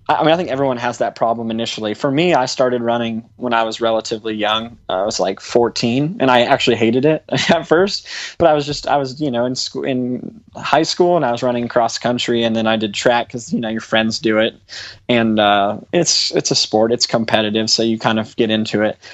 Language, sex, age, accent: English, male, 20-39, American